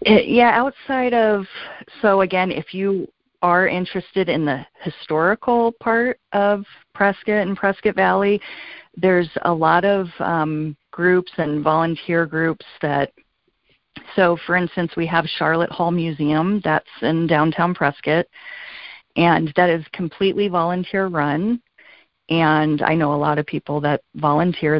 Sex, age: female, 40-59